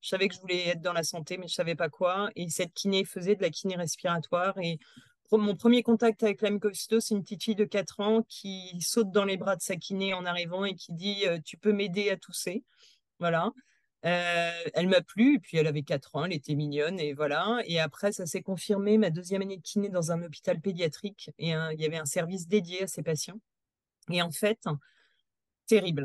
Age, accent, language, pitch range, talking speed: 30-49, French, French, 160-205 Hz, 235 wpm